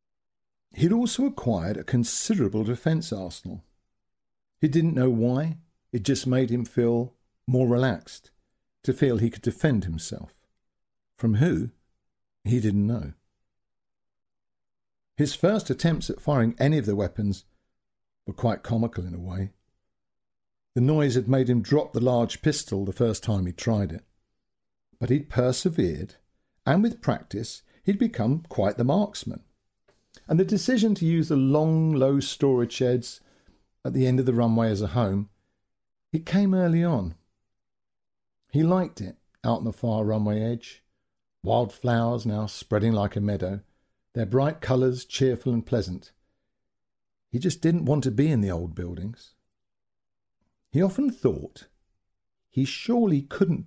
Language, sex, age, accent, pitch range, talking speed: English, male, 50-69, British, 100-135 Hz, 145 wpm